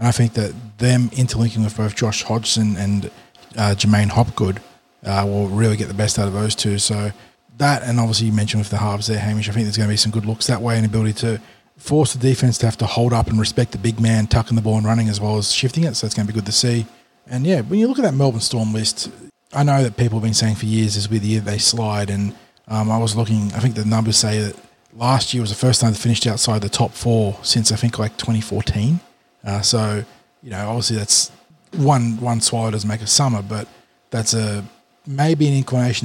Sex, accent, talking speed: male, Australian, 255 wpm